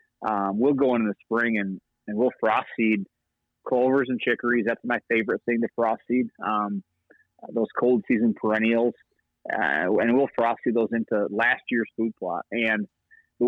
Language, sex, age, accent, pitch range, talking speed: English, male, 30-49, American, 105-120 Hz, 175 wpm